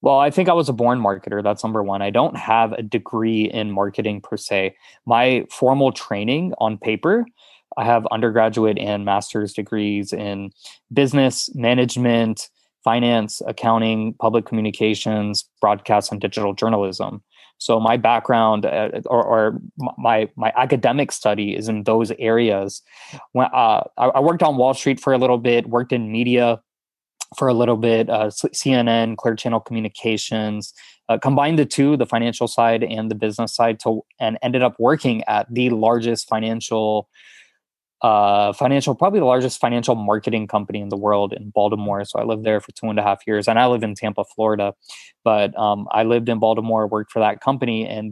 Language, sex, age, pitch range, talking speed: English, male, 20-39, 105-120 Hz, 170 wpm